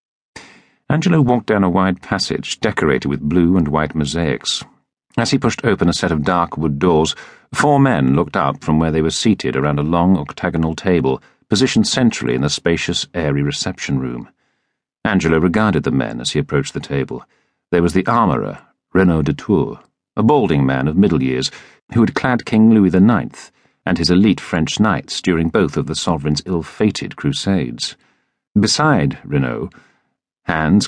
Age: 50-69